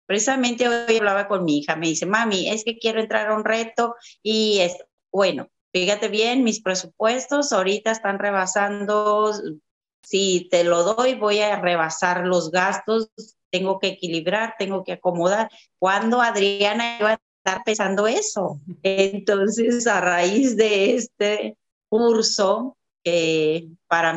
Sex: female